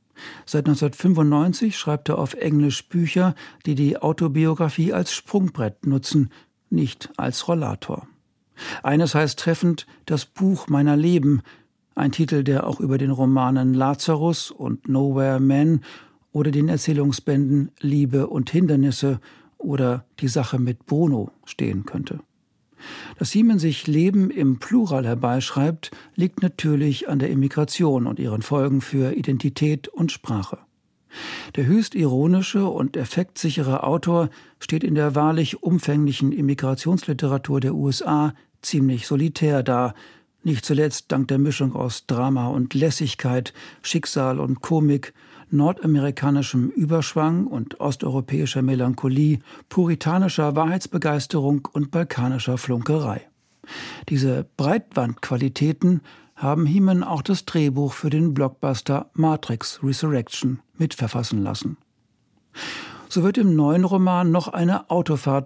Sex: male